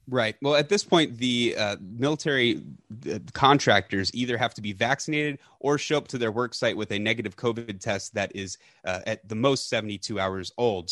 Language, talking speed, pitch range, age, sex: English, 190 wpm, 100-130 Hz, 30-49, male